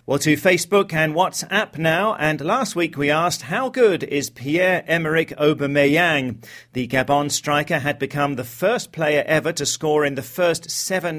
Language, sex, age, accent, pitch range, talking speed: English, male, 40-59, British, 135-170 Hz, 165 wpm